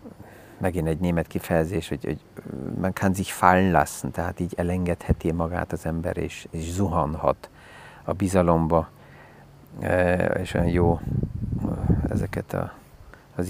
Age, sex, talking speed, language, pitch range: 40-59, male, 120 wpm, Hungarian, 85-100 Hz